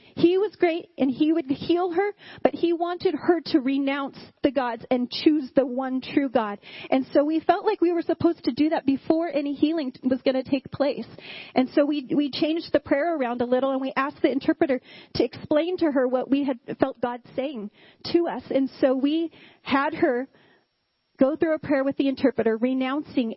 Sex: female